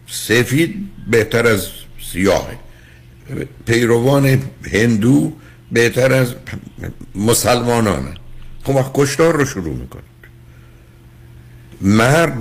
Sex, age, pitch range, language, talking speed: male, 60-79, 105-140 Hz, Persian, 75 wpm